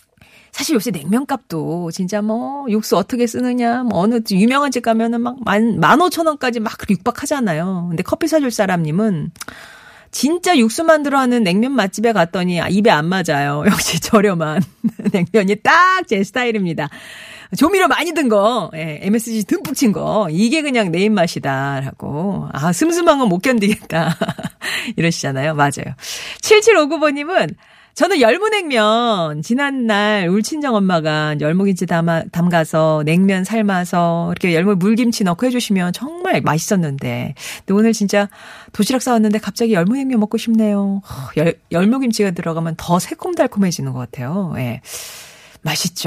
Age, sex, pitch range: 40-59, female, 170-240 Hz